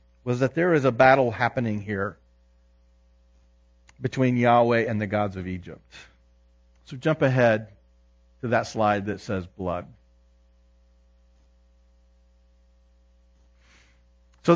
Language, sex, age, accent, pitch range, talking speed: English, male, 40-59, American, 90-140 Hz, 105 wpm